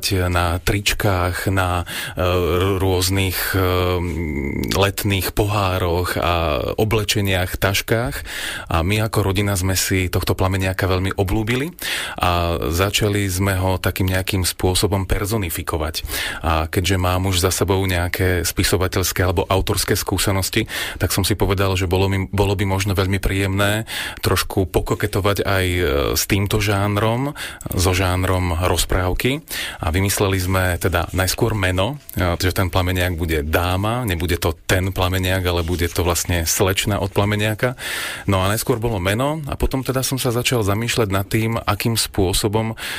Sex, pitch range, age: male, 90-105 Hz, 30-49